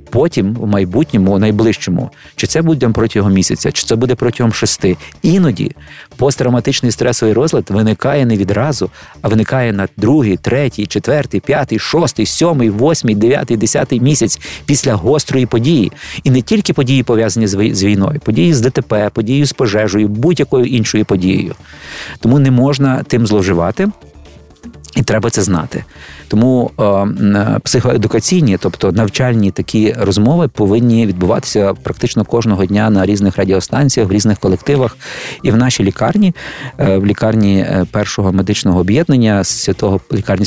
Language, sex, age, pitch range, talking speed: Ukrainian, male, 50-69, 100-125 Hz, 135 wpm